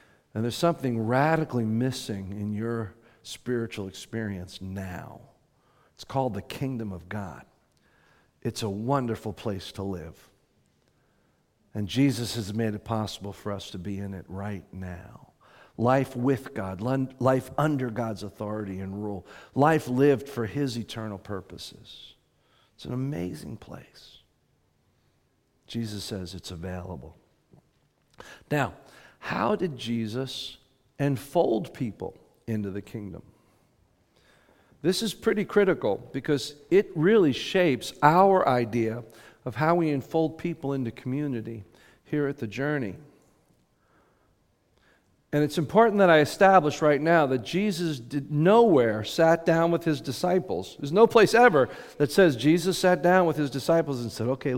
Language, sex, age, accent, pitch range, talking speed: English, male, 50-69, American, 105-155 Hz, 135 wpm